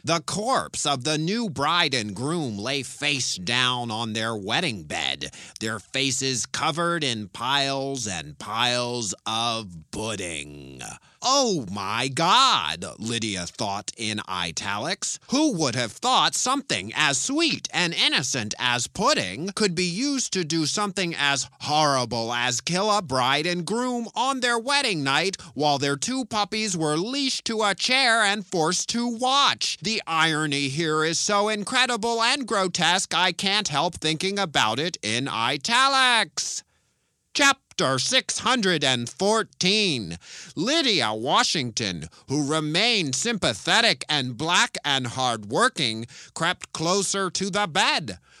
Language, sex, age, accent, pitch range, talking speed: English, male, 30-49, American, 125-205 Hz, 130 wpm